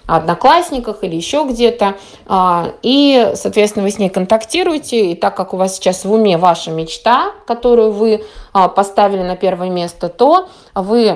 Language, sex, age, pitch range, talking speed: Russian, female, 20-39, 190-235 Hz, 150 wpm